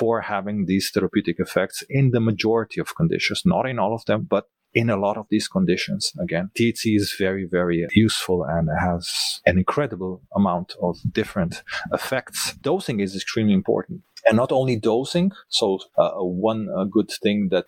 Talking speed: 175 wpm